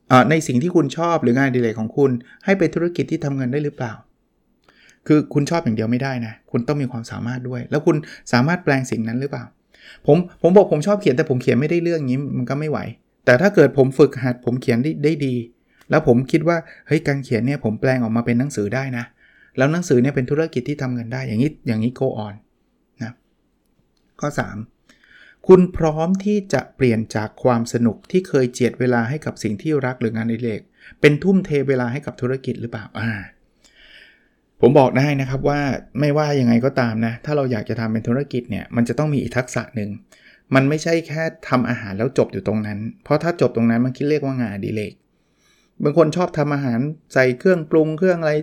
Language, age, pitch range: Thai, 20-39, 120-150 Hz